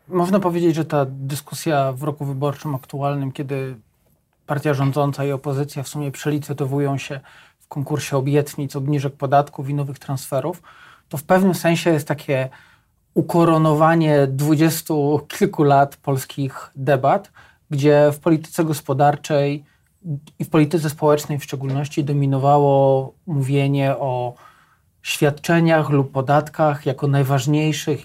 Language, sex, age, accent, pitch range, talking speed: Polish, male, 40-59, native, 135-150 Hz, 120 wpm